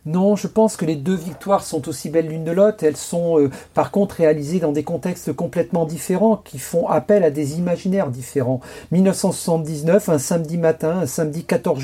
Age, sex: 40-59, male